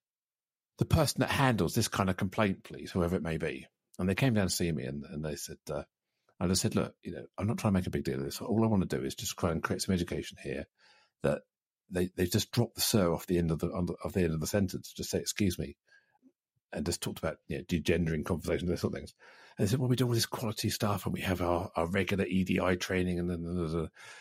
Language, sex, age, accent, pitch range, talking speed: English, male, 50-69, British, 90-115 Hz, 270 wpm